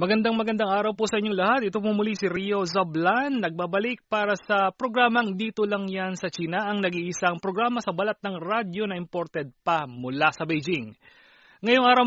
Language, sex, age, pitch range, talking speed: Filipino, male, 30-49, 165-220 Hz, 180 wpm